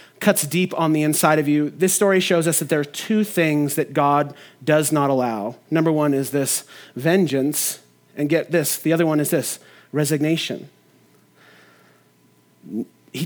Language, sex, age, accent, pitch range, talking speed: English, male, 30-49, American, 150-195 Hz, 165 wpm